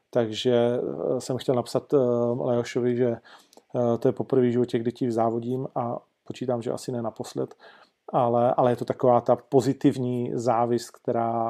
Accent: native